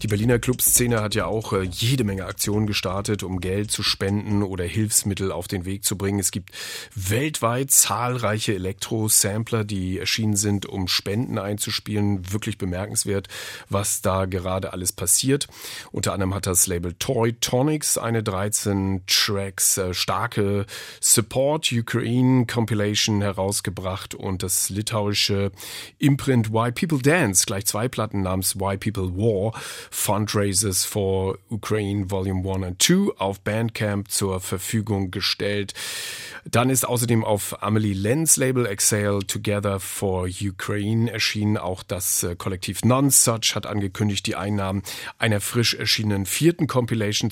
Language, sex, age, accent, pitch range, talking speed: German, male, 40-59, German, 95-115 Hz, 135 wpm